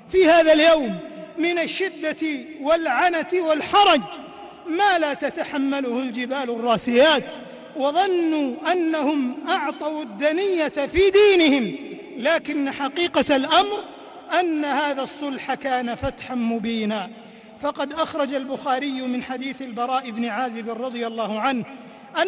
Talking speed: 100 wpm